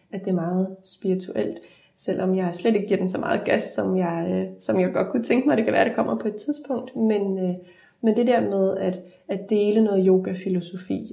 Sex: female